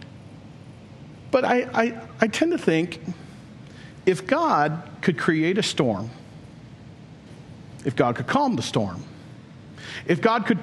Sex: male